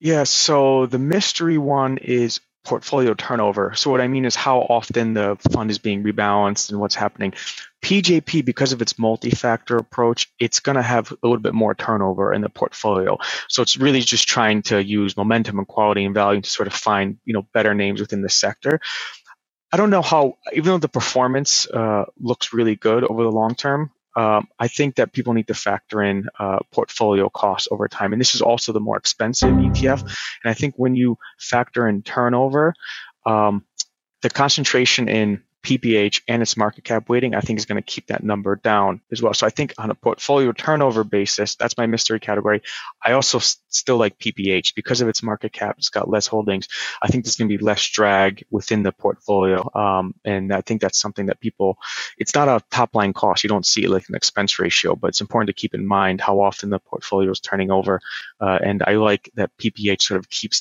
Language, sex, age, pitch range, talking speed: English, male, 20-39, 100-125 Hz, 210 wpm